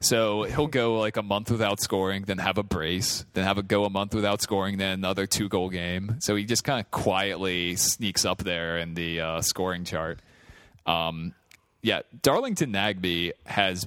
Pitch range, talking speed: 85-105 Hz, 185 wpm